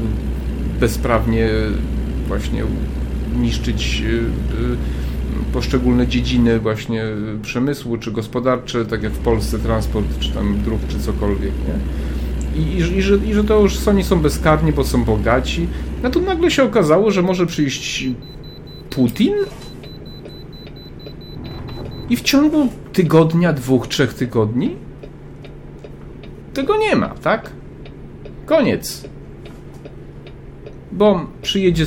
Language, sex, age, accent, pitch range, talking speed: Polish, male, 40-59, native, 115-190 Hz, 105 wpm